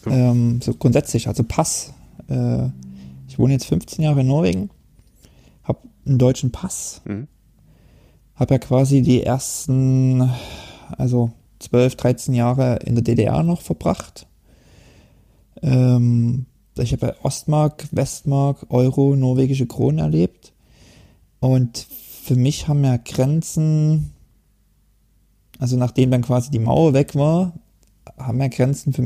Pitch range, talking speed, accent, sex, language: 120-140 Hz, 115 wpm, German, male, German